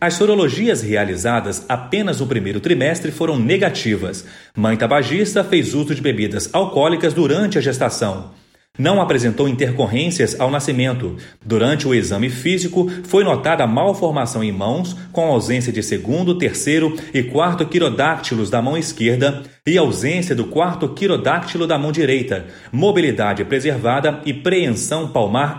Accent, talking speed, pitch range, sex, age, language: Brazilian, 135 wpm, 120-170 Hz, male, 40-59, Portuguese